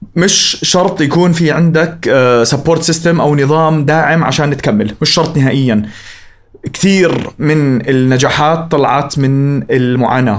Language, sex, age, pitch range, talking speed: Arabic, male, 30-49, 135-165 Hz, 120 wpm